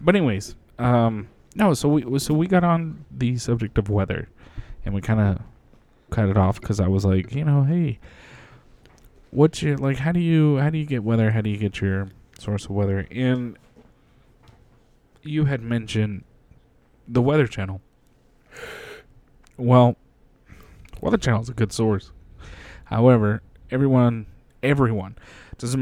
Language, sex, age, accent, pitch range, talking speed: English, male, 20-39, American, 100-125 Hz, 150 wpm